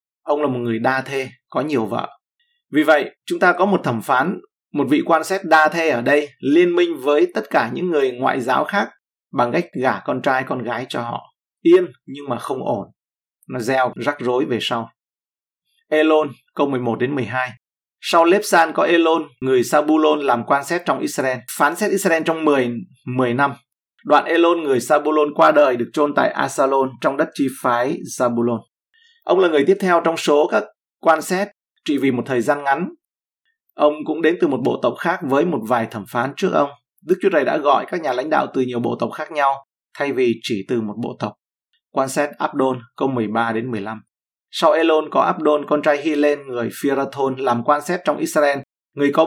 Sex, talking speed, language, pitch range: male, 205 wpm, Vietnamese, 125-165 Hz